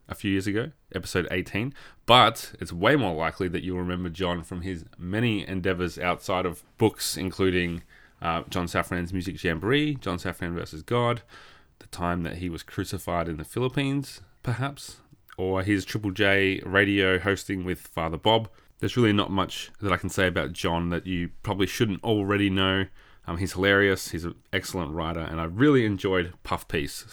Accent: Australian